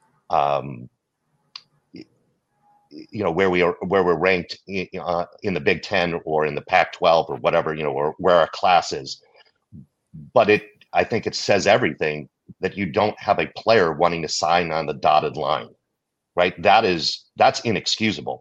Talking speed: 175 wpm